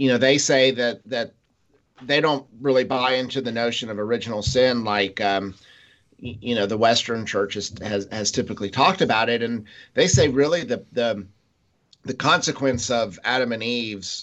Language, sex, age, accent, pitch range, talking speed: English, male, 50-69, American, 105-130 Hz, 175 wpm